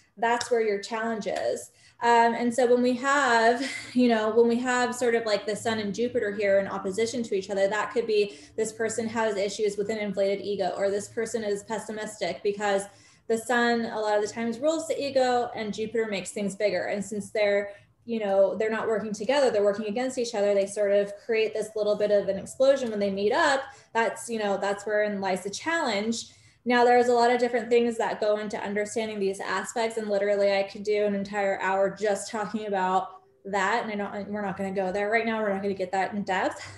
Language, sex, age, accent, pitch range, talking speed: English, female, 20-39, American, 200-235 Hz, 230 wpm